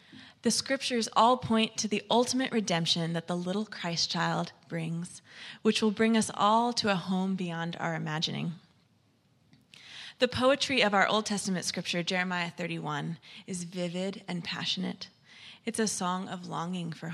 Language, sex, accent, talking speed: English, female, American, 155 wpm